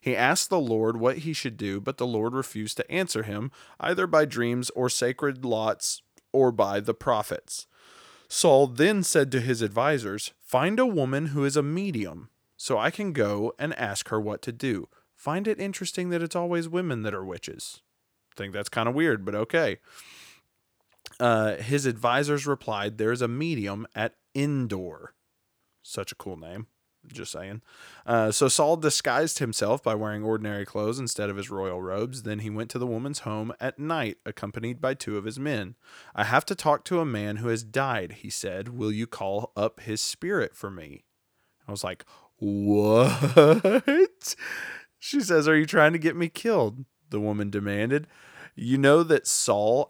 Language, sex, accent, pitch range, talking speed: English, male, American, 110-150 Hz, 180 wpm